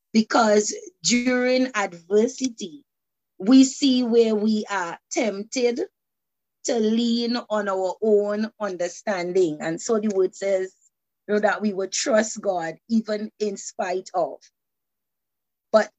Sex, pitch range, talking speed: female, 180-220 Hz, 115 wpm